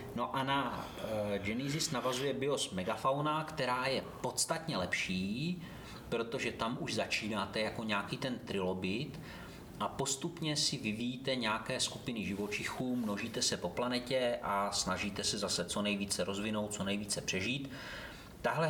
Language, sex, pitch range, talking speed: Czech, male, 105-125 Hz, 130 wpm